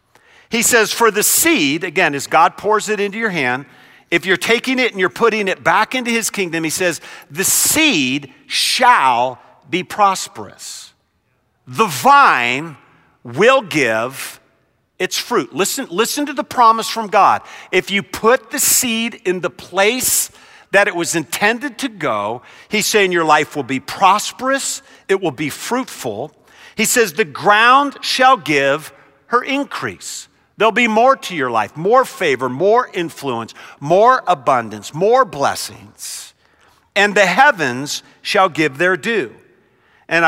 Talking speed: 150 wpm